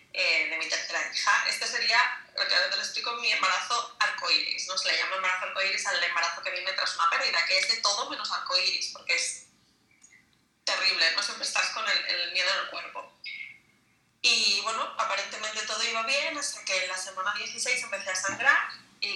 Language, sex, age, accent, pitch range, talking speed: Spanish, female, 20-39, Spanish, 190-275 Hz, 195 wpm